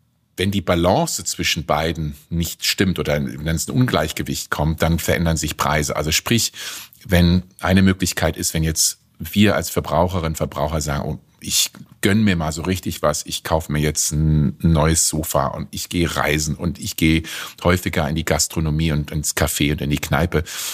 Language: German